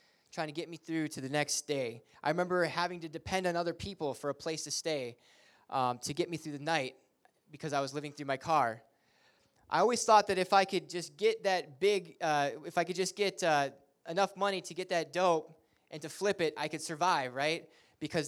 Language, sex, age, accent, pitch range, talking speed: English, male, 20-39, American, 125-170 Hz, 225 wpm